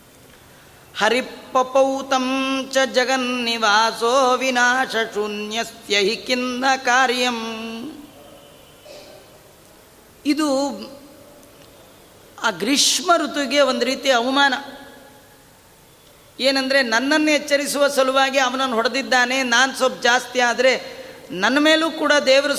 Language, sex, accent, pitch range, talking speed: Kannada, female, native, 245-275 Hz, 75 wpm